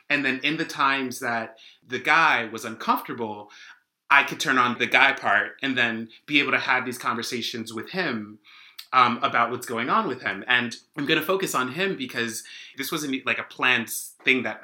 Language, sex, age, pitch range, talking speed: English, male, 30-49, 115-155 Hz, 195 wpm